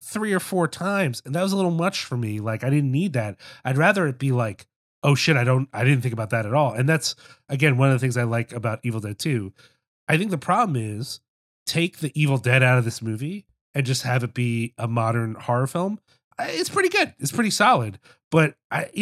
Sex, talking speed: male, 240 wpm